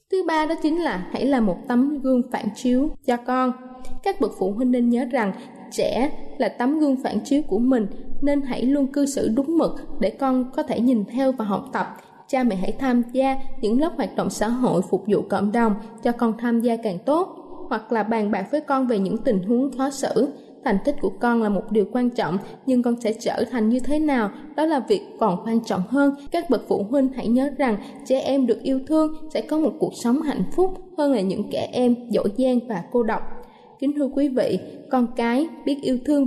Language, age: Vietnamese, 20-39